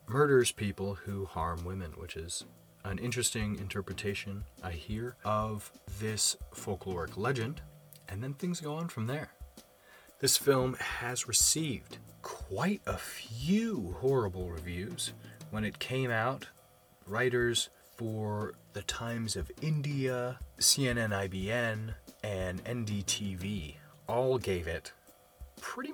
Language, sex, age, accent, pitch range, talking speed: English, male, 30-49, American, 95-130 Hz, 115 wpm